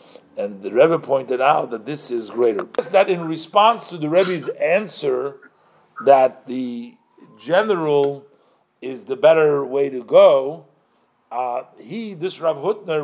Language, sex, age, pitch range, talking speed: English, male, 50-69, 150-195 Hz, 140 wpm